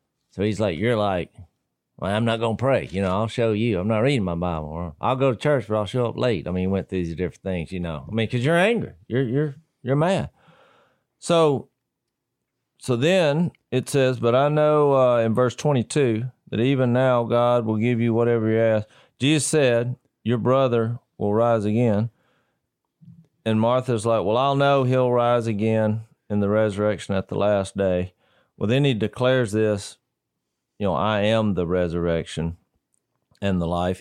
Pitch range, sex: 105-130 Hz, male